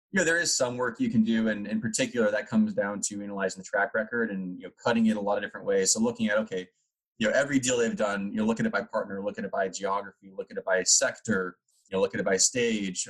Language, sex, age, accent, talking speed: English, male, 20-39, American, 295 wpm